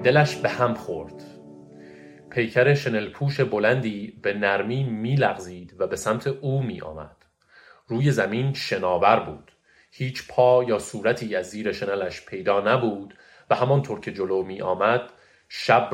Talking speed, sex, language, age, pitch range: 140 wpm, male, Persian, 30-49, 100-135 Hz